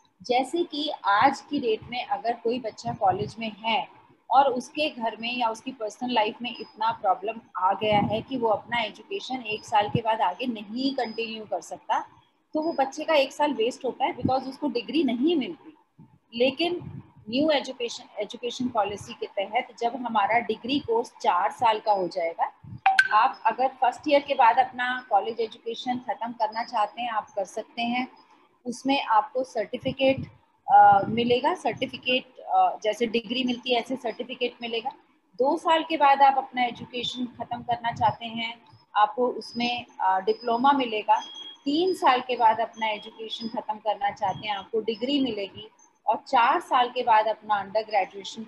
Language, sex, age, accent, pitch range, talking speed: Hindi, female, 30-49, native, 215-265 Hz, 170 wpm